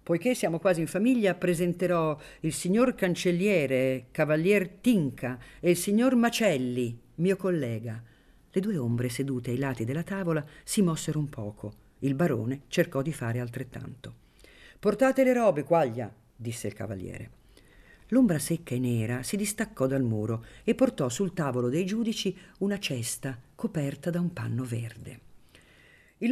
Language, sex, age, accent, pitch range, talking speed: Italian, female, 50-69, native, 130-195 Hz, 145 wpm